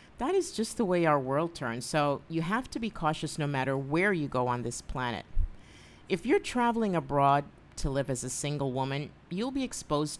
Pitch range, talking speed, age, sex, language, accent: 135-180 Hz, 205 wpm, 50-69, female, English, American